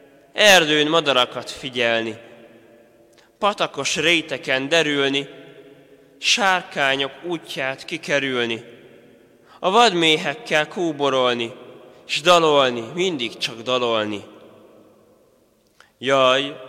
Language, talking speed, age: Hungarian, 65 wpm, 20-39